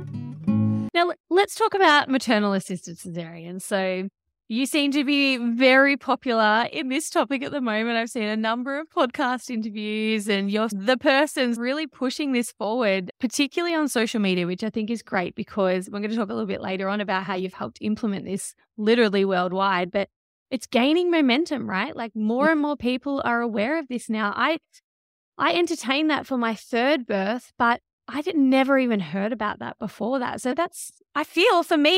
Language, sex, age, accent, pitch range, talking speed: English, female, 20-39, Australian, 205-275 Hz, 190 wpm